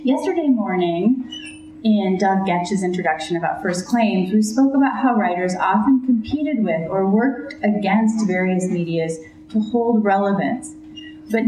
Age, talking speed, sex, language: 30-49, 135 wpm, female, English